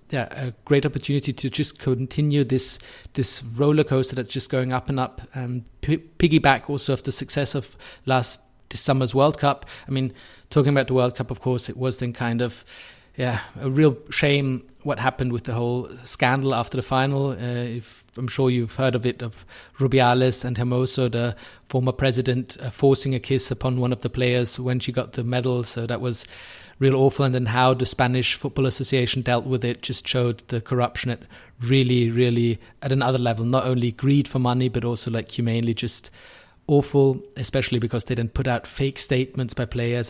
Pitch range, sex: 120-135 Hz, male